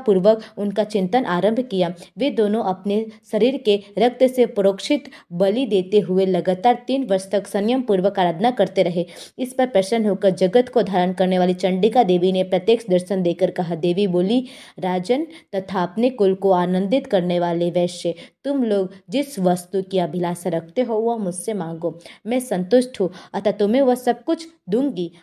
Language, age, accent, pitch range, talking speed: Hindi, 20-39, native, 185-235 Hz, 170 wpm